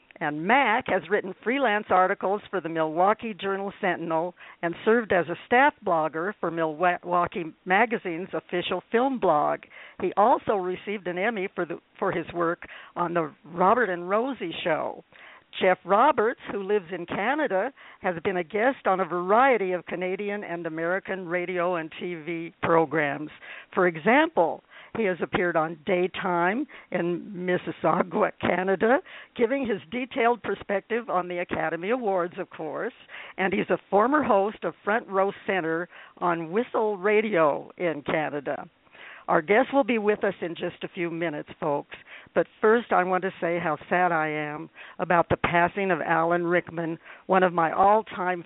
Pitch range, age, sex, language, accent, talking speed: 170-210 Hz, 60-79, female, English, American, 155 wpm